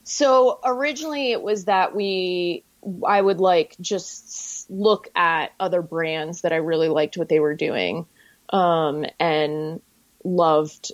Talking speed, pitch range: 135 wpm, 165-205 Hz